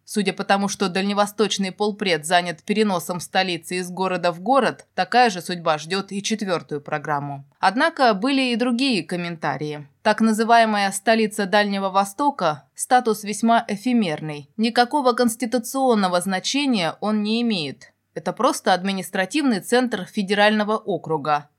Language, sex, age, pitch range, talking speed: Russian, female, 20-39, 175-230 Hz, 125 wpm